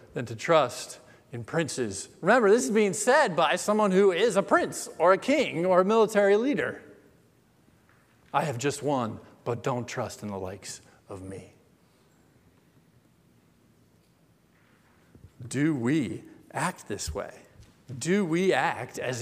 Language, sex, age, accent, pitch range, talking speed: English, male, 40-59, American, 120-190 Hz, 135 wpm